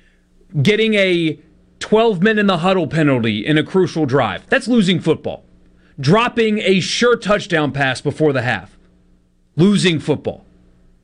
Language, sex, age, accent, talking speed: English, male, 40-59, American, 115 wpm